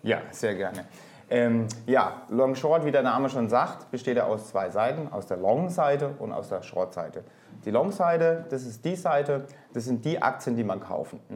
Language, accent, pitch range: German, German, 110-145 Hz